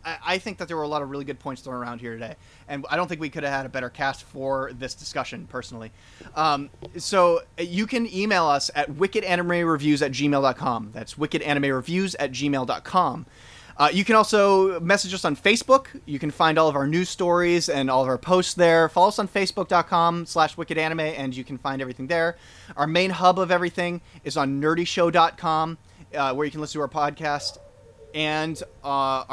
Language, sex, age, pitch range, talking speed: English, male, 30-49, 140-180 Hz, 190 wpm